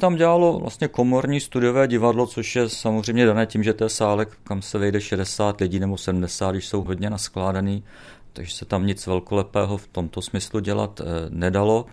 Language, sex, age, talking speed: Czech, male, 50-69, 180 wpm